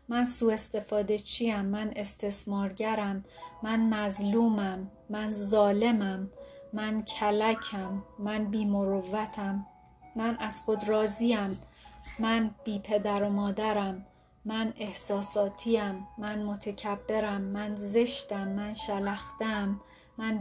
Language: Persian